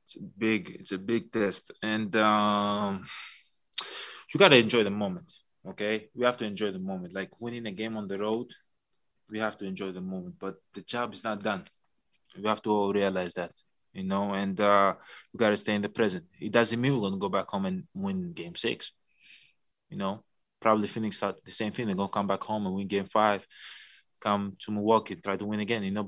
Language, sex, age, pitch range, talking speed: English, male, 20-39, 100-120 Hz, 215 wpm